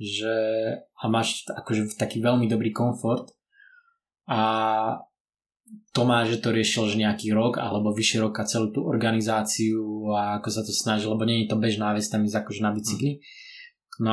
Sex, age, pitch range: male, 20-39, 110-120 Hz